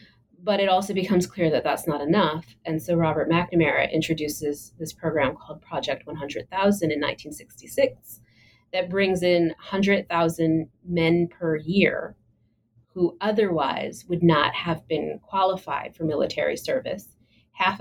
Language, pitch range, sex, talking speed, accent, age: English, 140-175 Hz, female, 130 wpm, American, 30-49